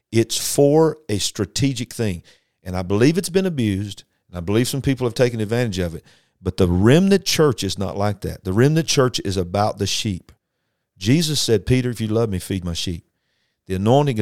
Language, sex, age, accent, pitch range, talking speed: English, male, 50-69, American, 95-125 Hz, 205 wpm